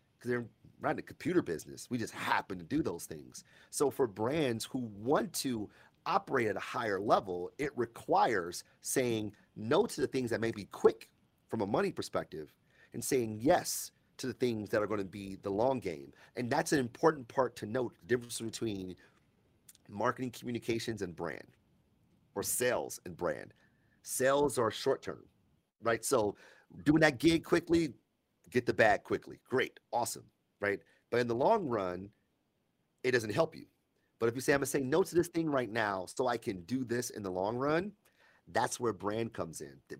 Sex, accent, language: male, American, English